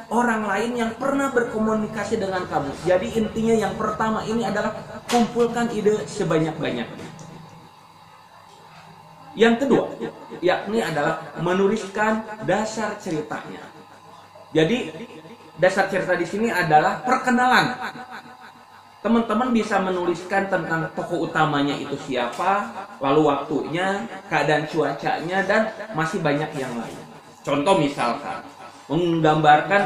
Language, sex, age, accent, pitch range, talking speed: Indonesian, male, 20-39, native, 165-215 Hz, 100 wpm